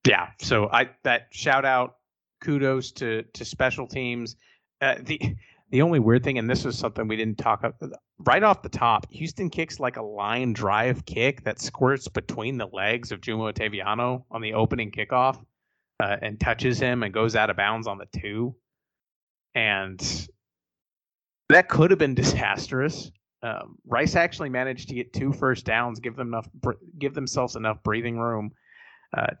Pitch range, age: 110-130 Hz, 30-49